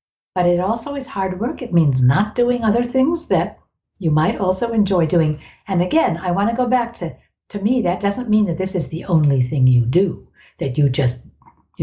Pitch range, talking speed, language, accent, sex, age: 145-215 Hz, 215 wpm, English, American, female, 60-79